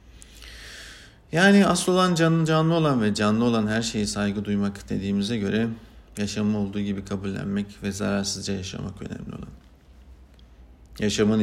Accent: native